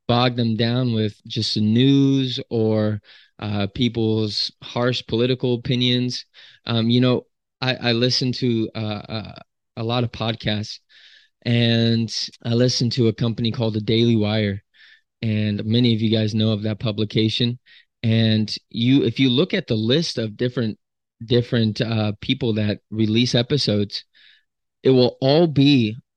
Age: 20-39